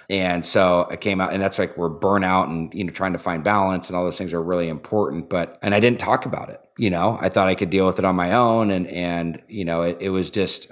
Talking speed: 285 wpm